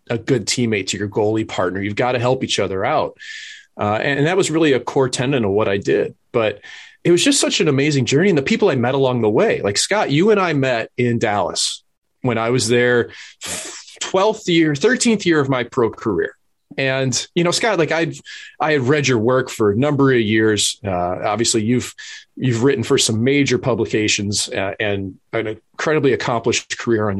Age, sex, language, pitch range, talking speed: 30-49, male, English, 115-165 Hz, 210 wpm